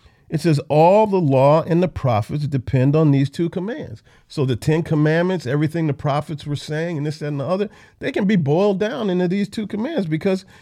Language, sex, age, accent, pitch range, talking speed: English, male, 50-69, American, 125-190 Hz, 210 wpm